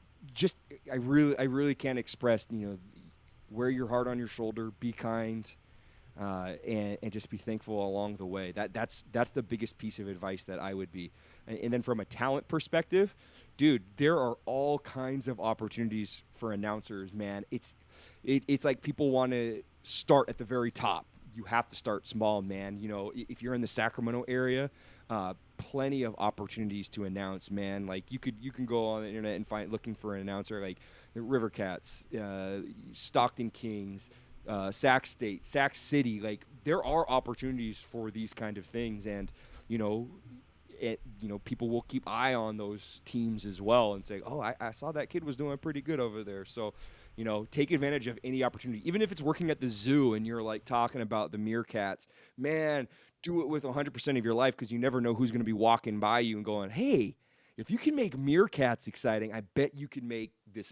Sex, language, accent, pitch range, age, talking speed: male, English, American, 105-130 Hz, 30-49, 205 wpm